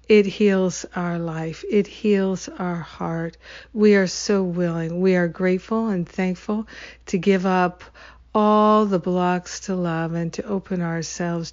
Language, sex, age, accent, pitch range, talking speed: English, female, 60-79, American, 170-210 Hz, 150 wpm